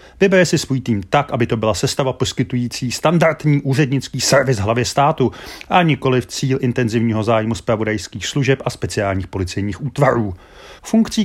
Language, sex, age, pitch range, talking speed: Czech, male, 30-49, 110-145 Hz, 150 wpm